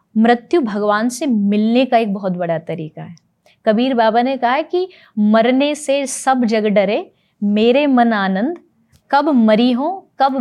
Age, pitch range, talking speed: 20-39, 200-265 Hz, 160 wpm